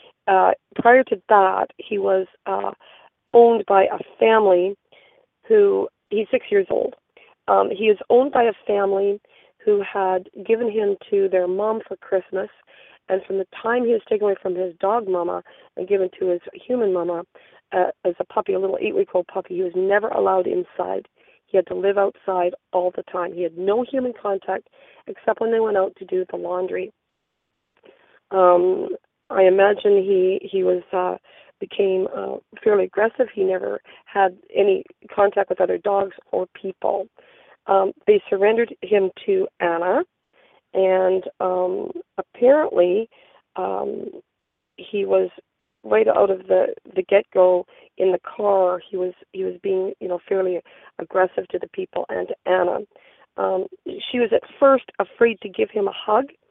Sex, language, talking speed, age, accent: female, English, 165 wpm, 40-59, American